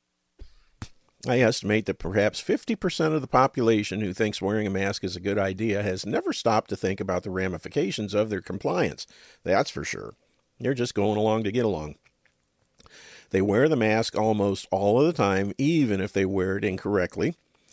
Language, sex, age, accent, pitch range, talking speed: English, male, 50-69, American, 95-110 Hz, 180 wpm